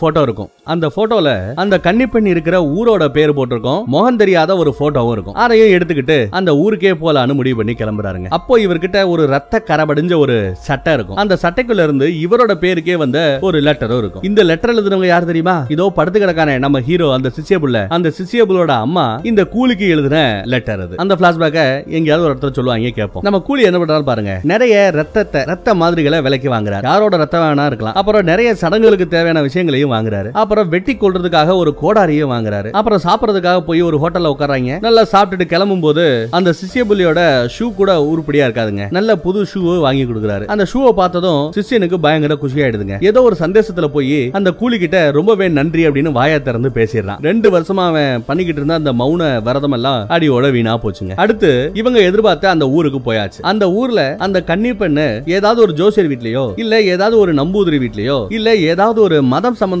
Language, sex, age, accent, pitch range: Tamil, male, 30-49, native, 140-195 Hz